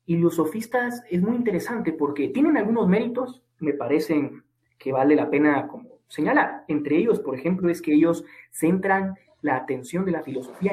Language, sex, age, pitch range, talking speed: Spanish, male, 30-49, 150-195 Hz, 175 wpm